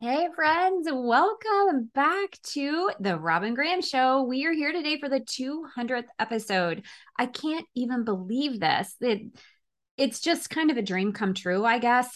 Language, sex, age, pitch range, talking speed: English, female, 20-39, 190-260 Hz, 165 wpm